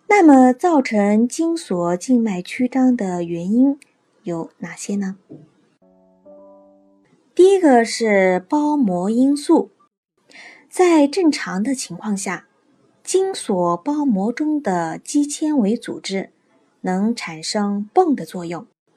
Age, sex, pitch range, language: 20-39, female, 190-285 Hz, Chinese